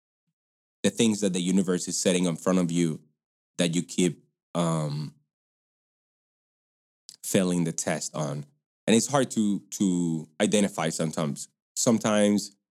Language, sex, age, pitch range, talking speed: English, male, 20-39, 85-100 Hz, 125 wpm